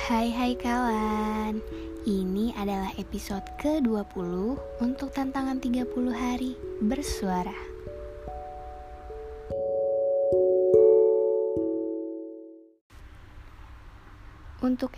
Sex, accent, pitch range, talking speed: female, native, 200-230 Hz, 50 wpm